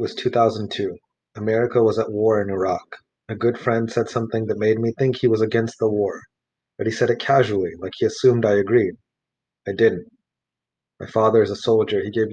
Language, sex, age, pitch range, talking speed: English, male, 30-49, 105-120 Hz, 200 wpm